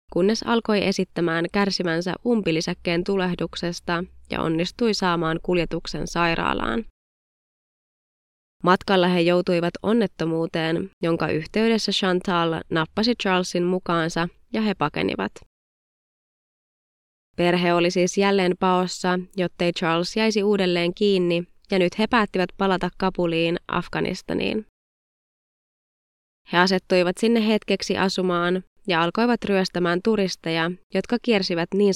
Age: 20-39